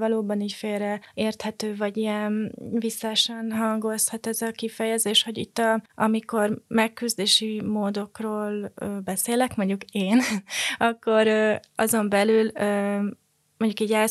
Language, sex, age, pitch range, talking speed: Hungarian, female, 20-39, 200-220 Hz, 110 wpm